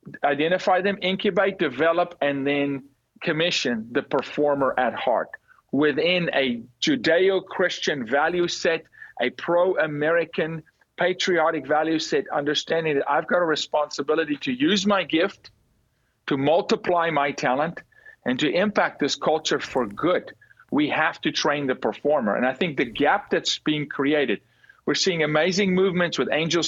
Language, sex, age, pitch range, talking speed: English, male, 40-59, 150-190 Hz, 140 wpm